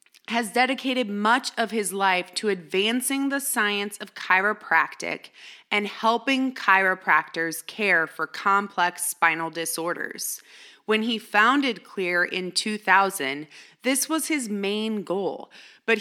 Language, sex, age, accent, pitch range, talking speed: English, female, 20-39, American, 185-235 Hz, 120 wpm